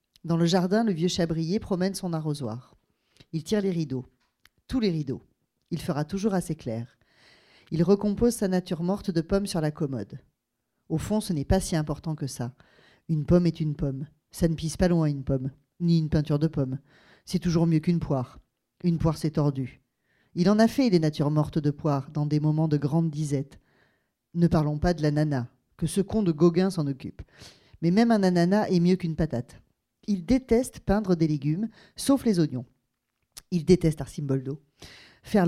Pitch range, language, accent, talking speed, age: 145-185 Hz, French, French, 190 wpm, 40-59